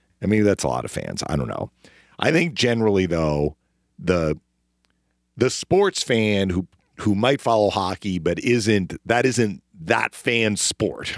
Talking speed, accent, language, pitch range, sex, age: 160 wpm, American, English, 85-110 Hz, male, 40-59